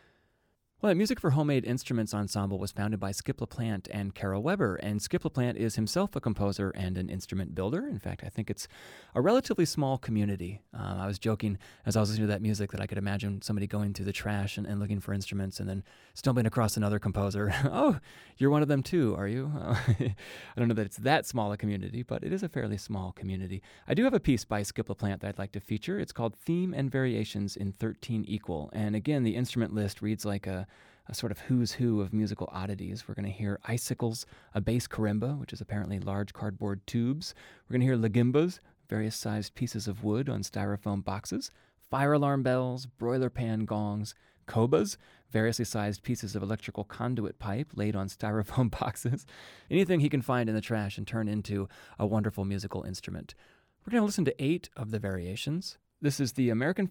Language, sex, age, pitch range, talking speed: English, male, 30-49, 100-125 Hz, 210 wpm